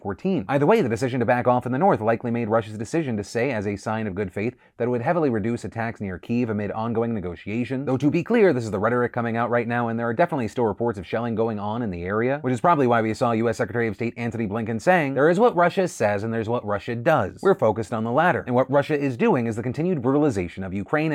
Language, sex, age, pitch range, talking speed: English, male, 30-49, 110-130 Hz, 275 wpm